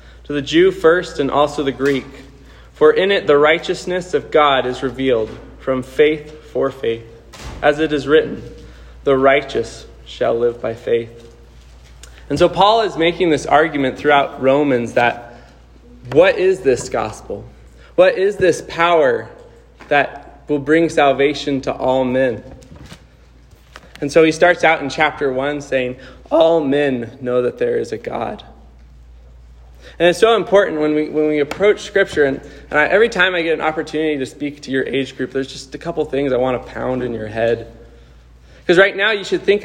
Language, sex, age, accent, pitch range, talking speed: English, male, 20-39, American, 120-155 Hz, 175 wpm